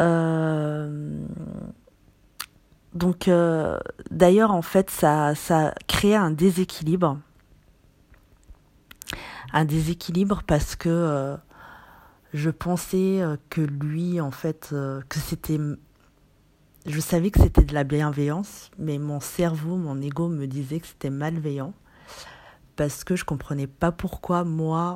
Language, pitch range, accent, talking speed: French, 145-170 Hz, French, 115 wpm